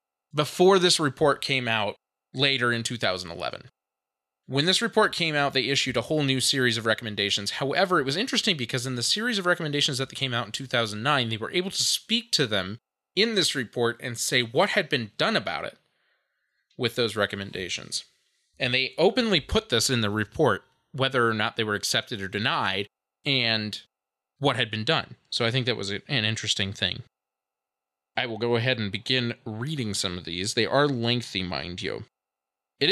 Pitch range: 110-155 Hz